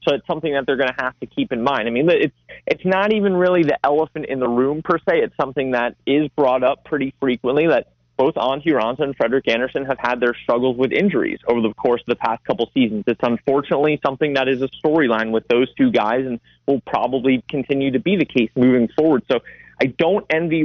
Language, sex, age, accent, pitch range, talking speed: English, male, 30-49, American, 125-150 Hz, 235 wpm